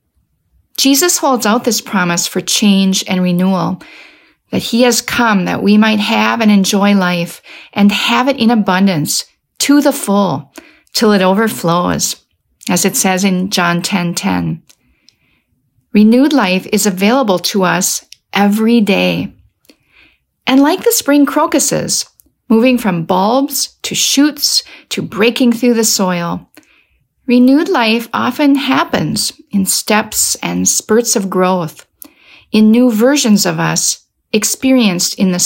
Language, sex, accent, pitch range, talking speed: English, female, American, 185-240 Hz, 135 wpm